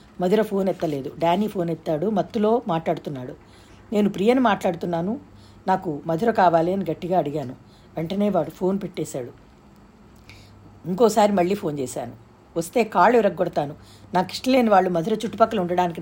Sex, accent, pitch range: female, native, 155-200 Hz